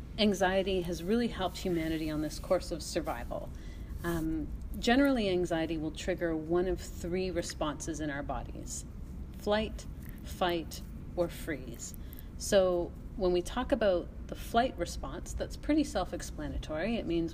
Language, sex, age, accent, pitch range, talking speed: English, female, 40-59, American, 160-195 Hz, 135 wpm